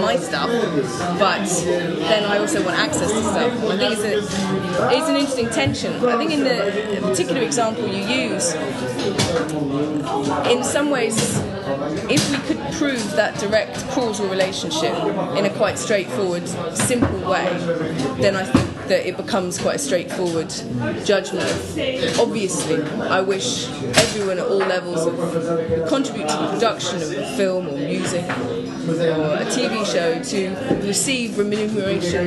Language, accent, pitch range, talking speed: English, British, 175-225 Hz, 135 wpm